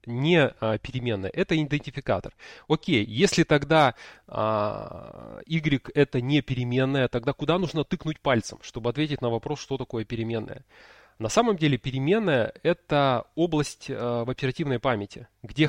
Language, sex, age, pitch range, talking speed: Russian, male, 20-39, 120-155 Hz, 140 wpm